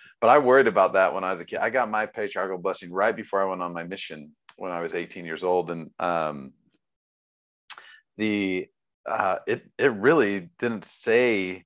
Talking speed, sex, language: 190 wpm, male, English